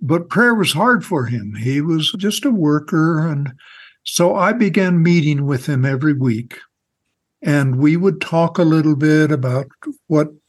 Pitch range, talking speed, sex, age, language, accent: 145-190 Hz, 165 wpm, male, 60-79, English, American